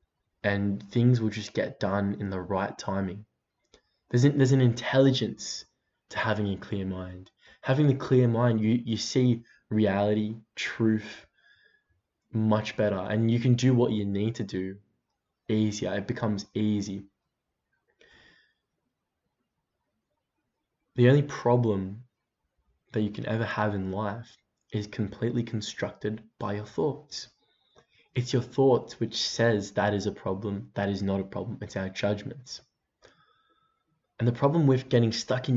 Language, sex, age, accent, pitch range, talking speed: English, male, 10-29, Australian, 100-120 Hz, 140 wpm